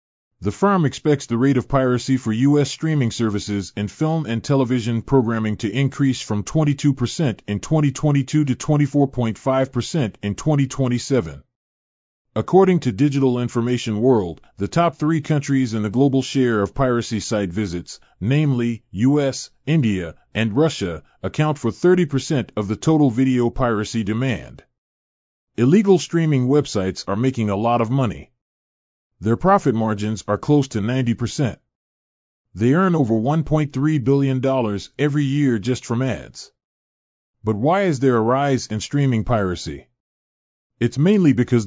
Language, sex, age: Japanese, male, 30-49